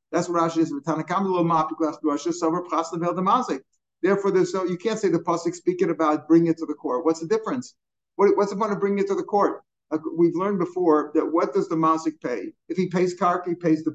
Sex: male